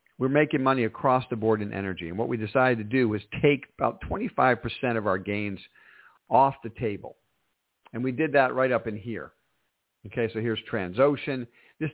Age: 50-69